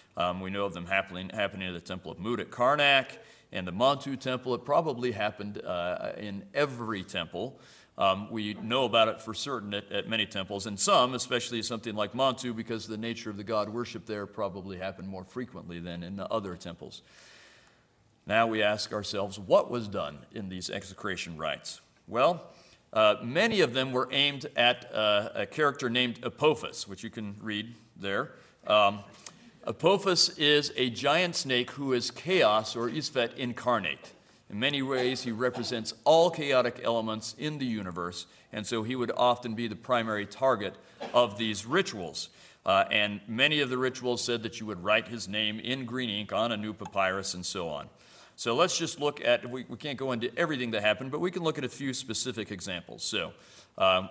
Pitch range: 105-130 Hz